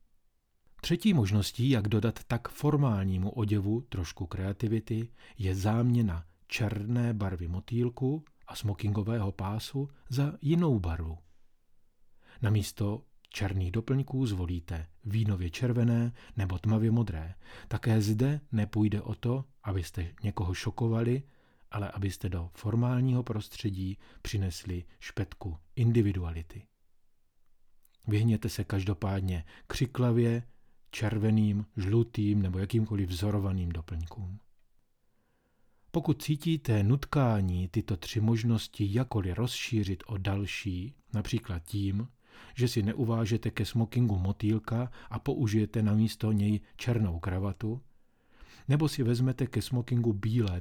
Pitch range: 95-120 Hz